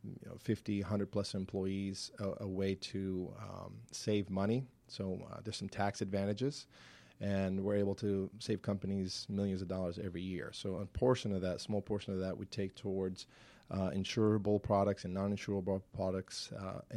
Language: English